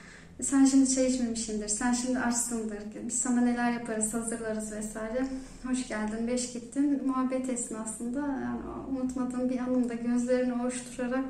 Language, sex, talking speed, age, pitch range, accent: Turkish, female, 135 wpm, 30-49, 230-260 Hz, native